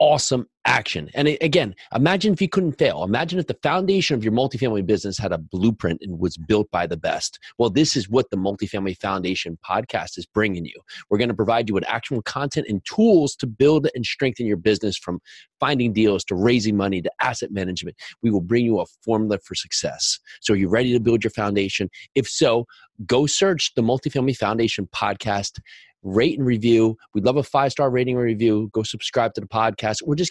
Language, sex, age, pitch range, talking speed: English, male, 30-49, 95-125 Hz, 205 wpm